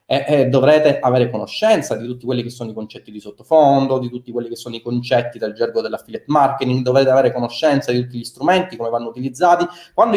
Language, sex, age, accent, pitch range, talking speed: Italian, male, 30-49, native, 125-175 Hz, 205 wpm